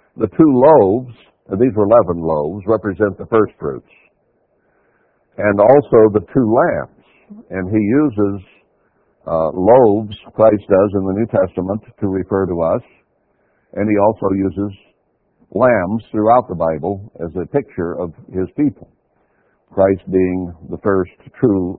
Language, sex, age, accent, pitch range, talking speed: English, male, 60-79, American, 95-120 Hz, 140 wpm